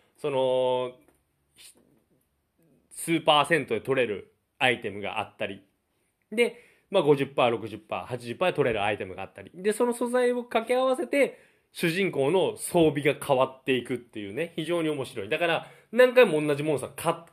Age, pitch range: 20-39, 130-205 Hz